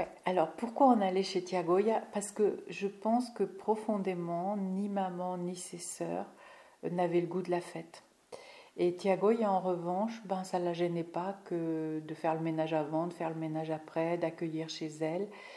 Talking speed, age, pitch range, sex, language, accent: 180 wpm, 50-69, 165-195 Hz, female, French, French